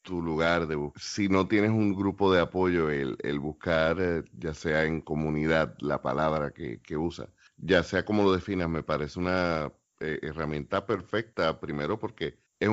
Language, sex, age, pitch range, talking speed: Spanish, male, 30-49, 85-100 Hz, 175 wpm